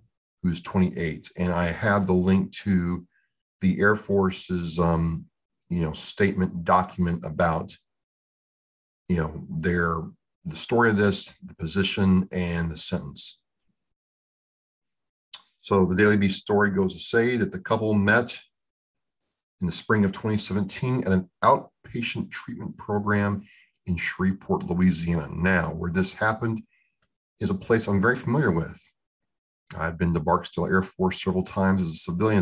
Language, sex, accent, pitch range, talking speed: English, male, American, 85-105 Hz, 140 wpm